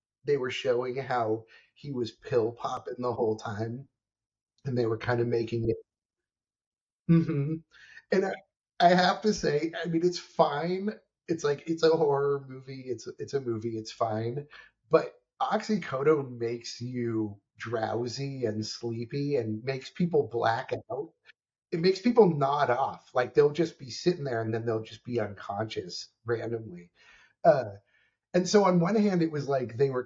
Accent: American